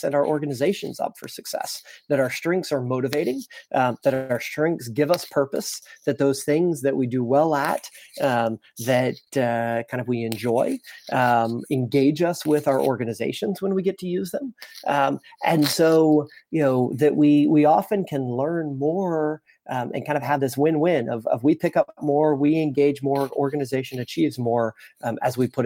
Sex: male